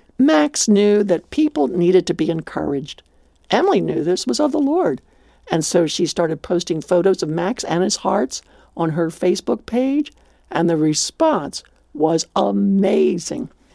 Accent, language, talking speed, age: American, English, 155 wpm, 60-79